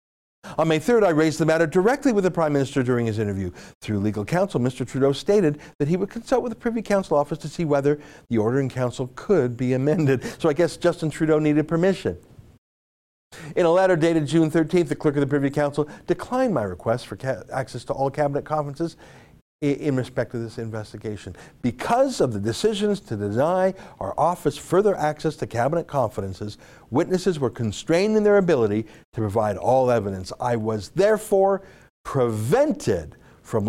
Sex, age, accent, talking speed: male, 50-69, American, 180 wpm